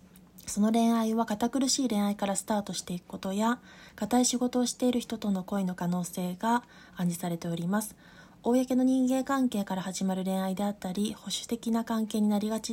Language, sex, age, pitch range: Japanese, female, 20-39, 185-230 Hz